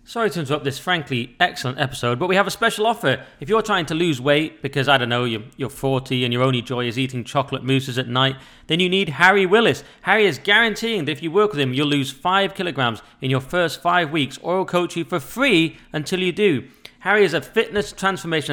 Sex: male